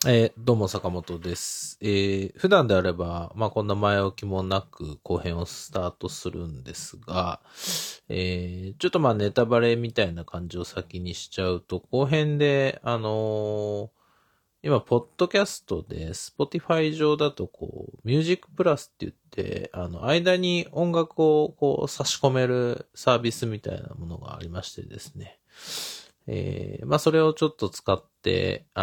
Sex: male